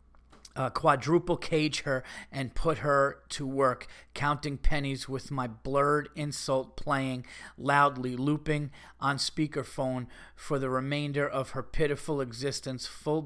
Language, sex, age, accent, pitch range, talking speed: English, male, 40-59, American, 135-165 Hz, 125 wpm